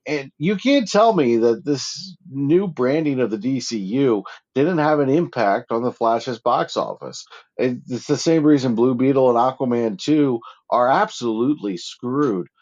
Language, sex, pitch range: English, male, 115-175 Hz